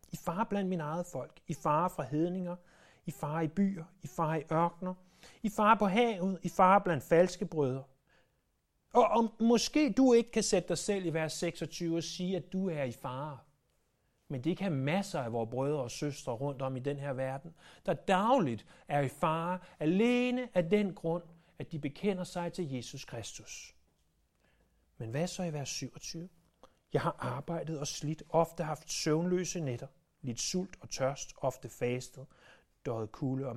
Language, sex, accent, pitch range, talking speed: Danish, male, native, 140-185 Hz, 180 wpm